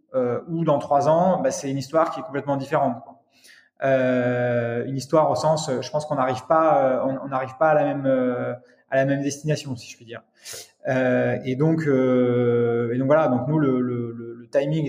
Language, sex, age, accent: French, male, 20-39, French